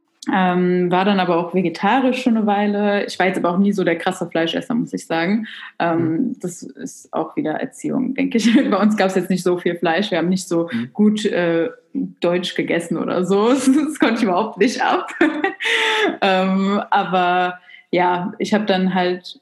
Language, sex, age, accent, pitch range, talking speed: German, female, 20-39, German, 170-205 Hz, 190 wpm